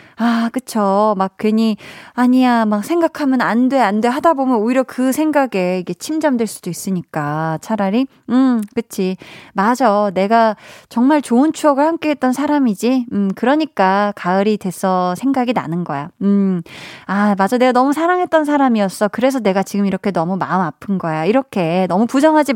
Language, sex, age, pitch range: Korean, female, 20-39, 185-255 Hz